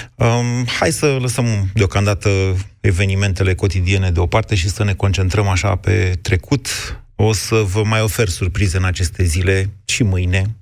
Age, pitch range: 30-49, 95-115 Hz